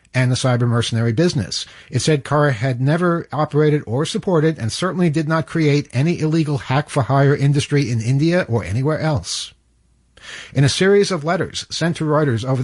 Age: 50-69